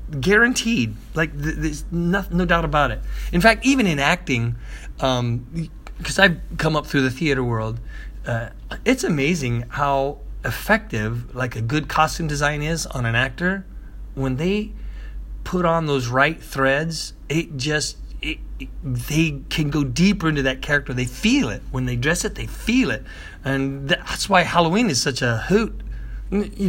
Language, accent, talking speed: English, American, 165 wpm